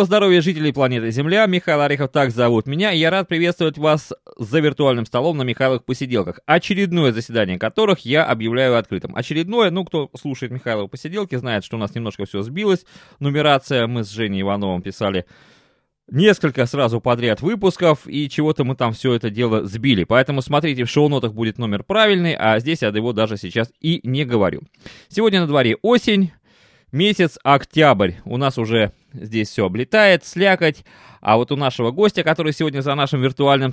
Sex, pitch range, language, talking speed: male, 115-165 Hz, Russian, 170 wpm